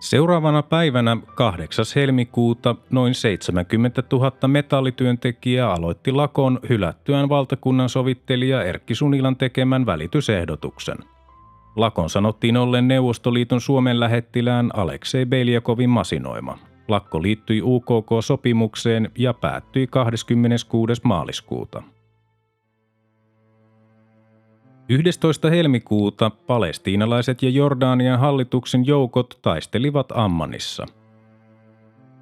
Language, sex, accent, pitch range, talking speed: Finnish, male, native, 110-135 Hz, 80 wpm